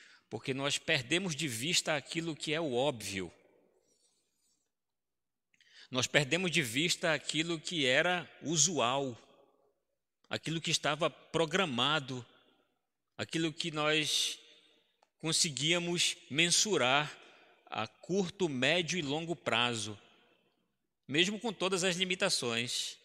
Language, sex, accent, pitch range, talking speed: Portuguese, male, Brazilian, 140-185 Hz, 100 wpm